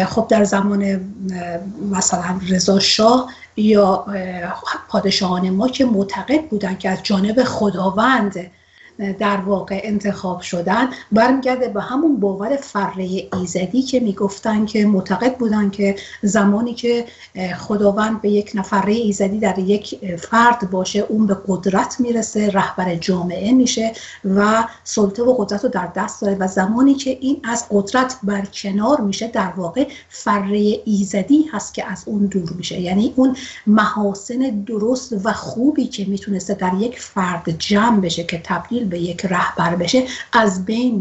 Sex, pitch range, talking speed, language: female, 195-240 Hz, 145 wpm, Persian